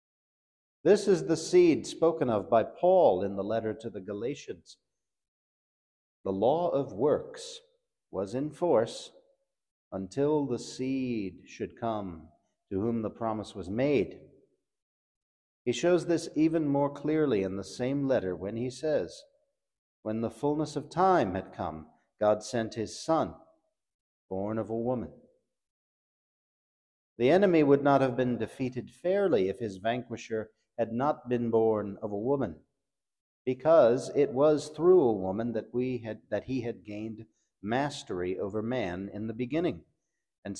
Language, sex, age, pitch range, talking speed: English, male, 50-69, 105-145 Hz, 140 wpm